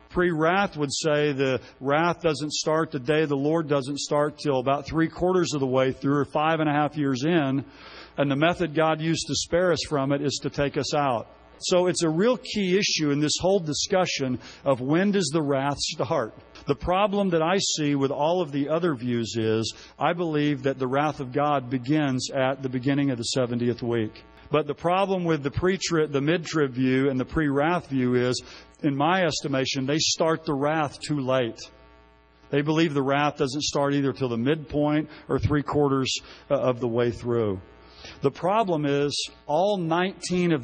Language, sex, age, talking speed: English, male, 50-69, 190 wpm